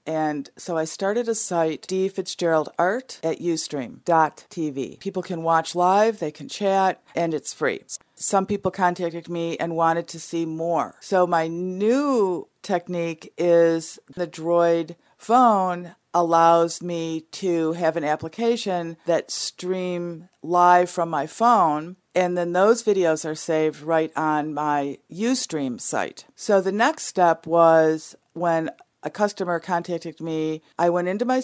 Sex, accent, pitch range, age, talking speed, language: female, American, 160-190 Hz, 50-69, 140 wpm, English